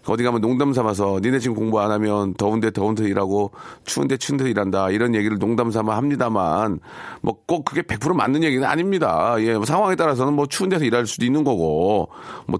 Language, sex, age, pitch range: Korean, male, 40-59, 110-150 Hz